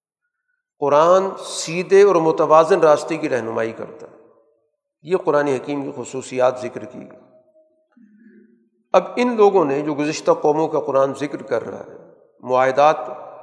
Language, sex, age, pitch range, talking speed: Urdu, male, 50-69, 145-205 Hz, 135 wpm